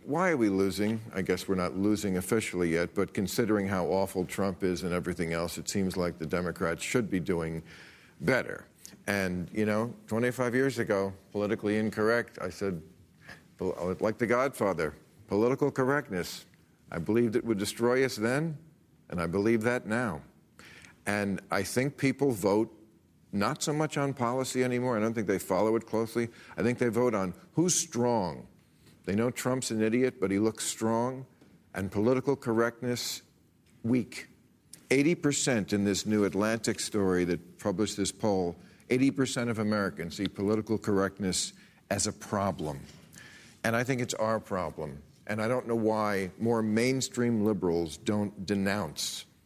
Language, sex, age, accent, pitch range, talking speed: English, male, 50-69, American, 95-120 Hz, 155 wpm